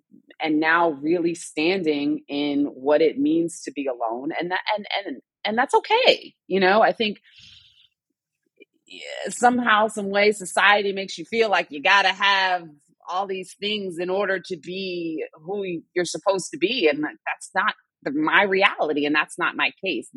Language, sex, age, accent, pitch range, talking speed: English, female, 30-49, American, 135-185 Hz, 170 wpm